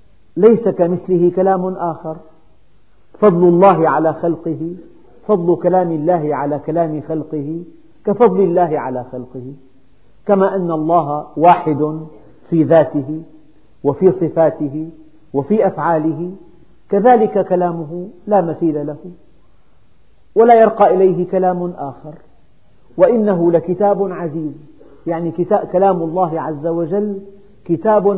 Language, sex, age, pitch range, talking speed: Arabic, male, 50-69, 155-190 Hz, 100 wpm